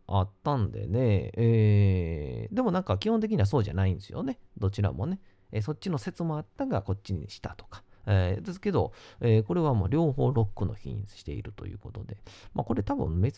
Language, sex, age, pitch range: Japanese, male, 40-59, 95-115 Hz